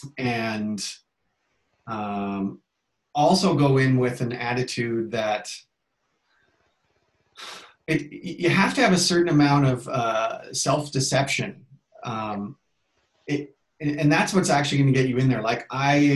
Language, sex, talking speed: English, male, 125 wpm